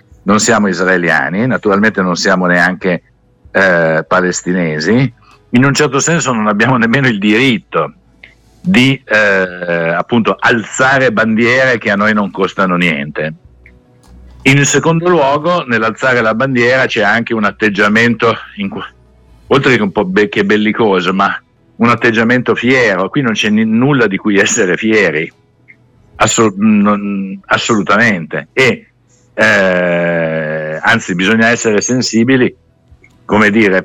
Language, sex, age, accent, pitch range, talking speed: Italian, male, 60-79, native, 95-130 Hz, 130 wpm